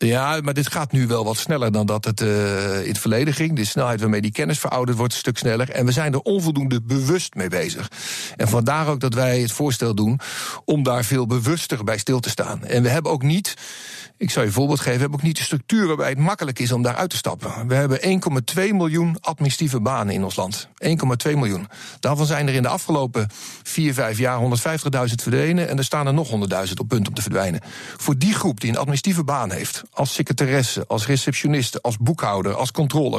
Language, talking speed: Dutch, 225 wpm